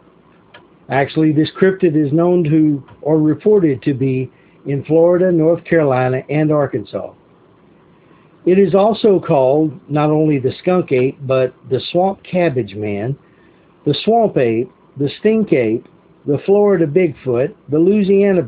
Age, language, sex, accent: 50-69, English, male, American